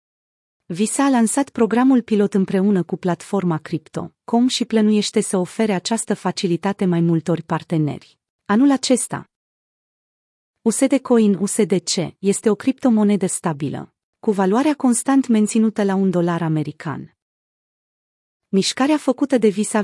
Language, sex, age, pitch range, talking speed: Romanian, female, 30-49, 180-230 Hz, 120 wpm